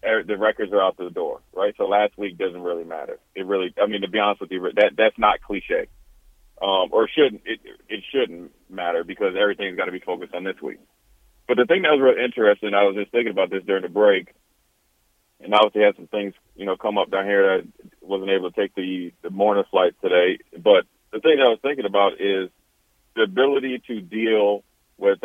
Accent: American